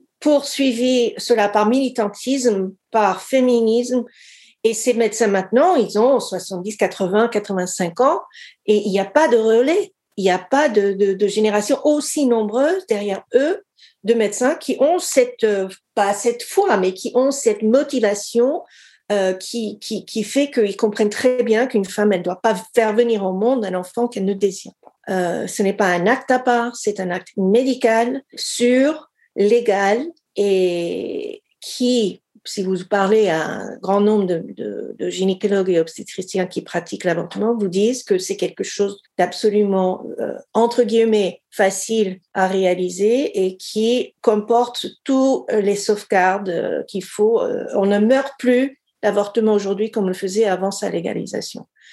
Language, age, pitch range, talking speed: French, 50-69, 195-245 Hz, 160 wpm